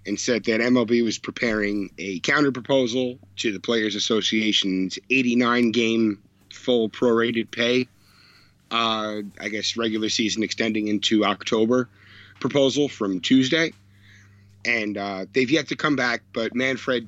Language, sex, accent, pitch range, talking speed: English, male, American, 100-130 Hz, 125 wpm